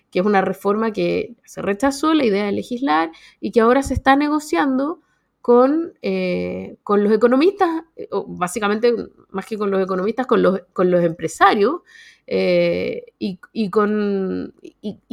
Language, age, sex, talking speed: Spanish, 30-49, female, 130 wpm